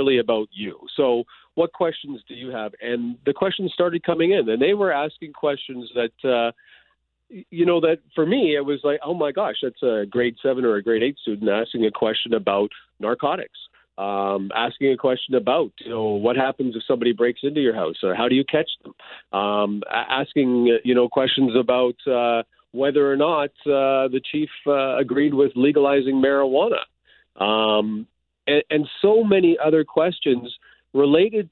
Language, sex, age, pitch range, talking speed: English, male, 40-59, 120-145 Hz, 175 wpm